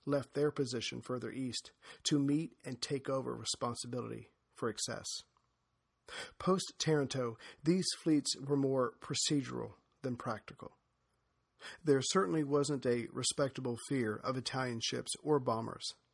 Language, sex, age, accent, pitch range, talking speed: English, male, 40-59, American, 125-150 Hz, 120 wpm